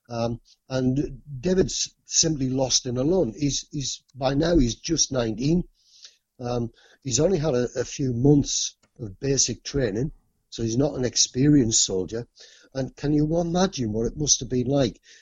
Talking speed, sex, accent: 155 wpm, male, British